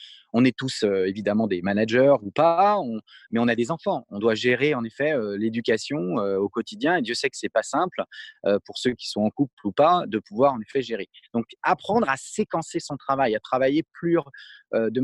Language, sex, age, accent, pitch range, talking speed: French, male, 30-49, French, 120-170 Hz, 230 wpm